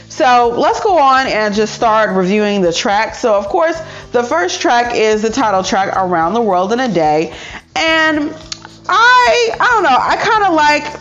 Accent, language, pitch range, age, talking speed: American, English, 190-245 Hz, 30-49, 190 wpm